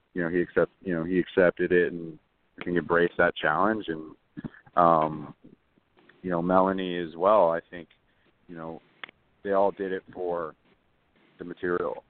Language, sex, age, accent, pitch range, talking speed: English, male, 40-59, American, 85-100 Hz, 160 wpm